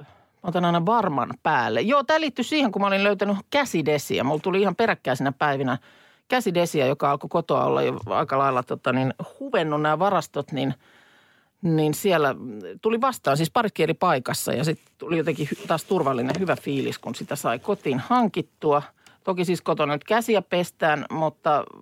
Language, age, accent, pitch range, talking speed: Finnish, 50-69, native, 150-220 Hz, 165 wpm